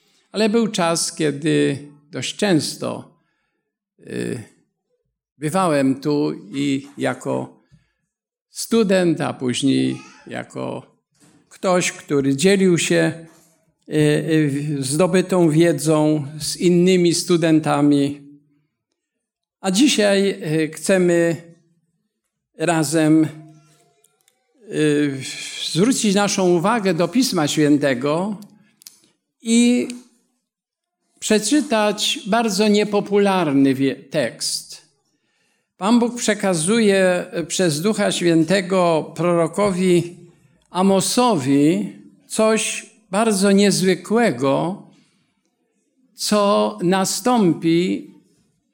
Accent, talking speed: native, 65 wpm